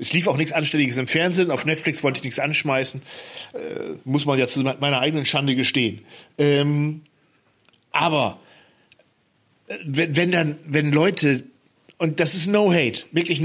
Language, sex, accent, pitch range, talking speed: German, male, German, 145-180 Hz, 150 wpm